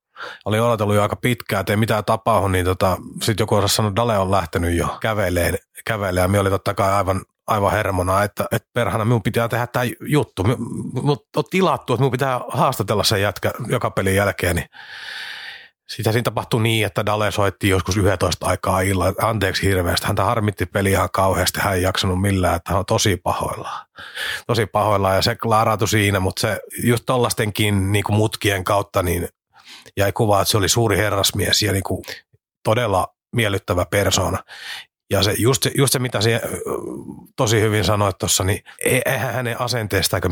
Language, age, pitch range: Finnish, 30-49, 95-115 Hz